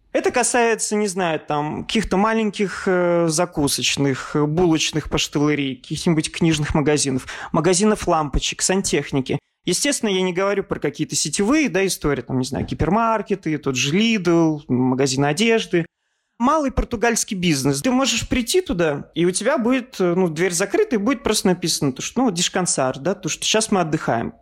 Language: Russian